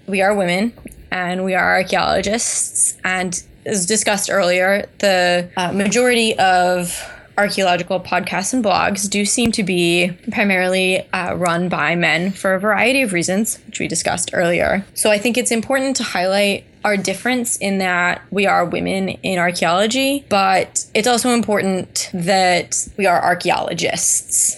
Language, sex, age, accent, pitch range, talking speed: English, female, 20-39, American, 180-215 Hz, 150 wpm